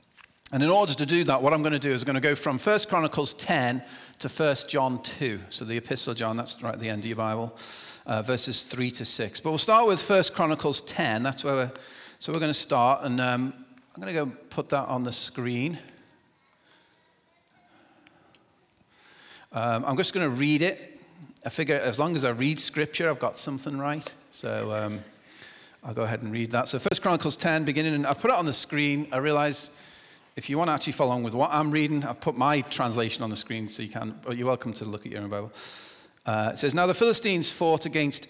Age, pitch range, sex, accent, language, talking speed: 40-59, 120-155 Hz, male, British, English, 230 wpm